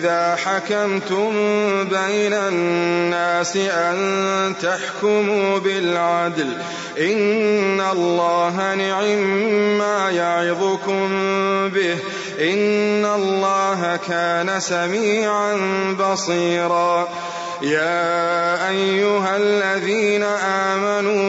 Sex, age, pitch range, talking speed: male, 30-49, 175-200 Hz, 60 wpm